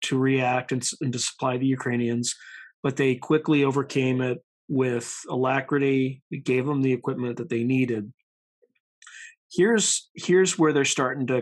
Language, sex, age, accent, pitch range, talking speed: English, male, 40-59, American, 125-160 Hz, 145 wpm